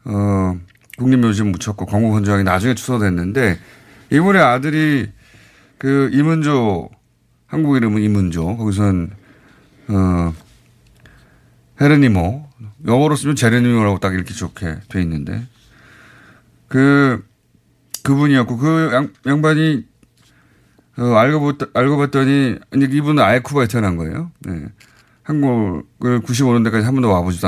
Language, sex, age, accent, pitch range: Korean, male, 30-49, native, 100-140 Hz